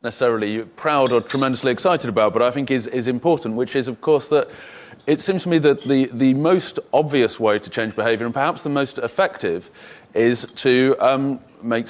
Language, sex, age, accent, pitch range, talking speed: English, male, 30-49, British, 120-150 Hz, 195 wpm